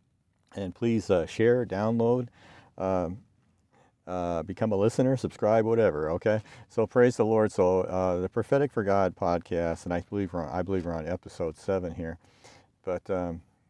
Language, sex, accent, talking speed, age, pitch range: English, male, American, 165 wpm, 50-69, 85-105 Hz